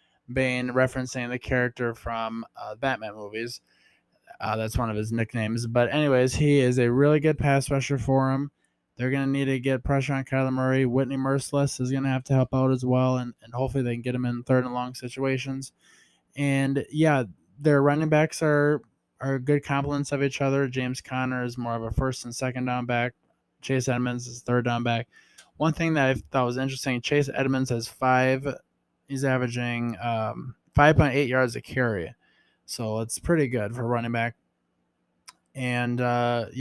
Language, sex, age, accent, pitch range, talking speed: English, male, 20-39, American, 120-135 Hz, 190 wpm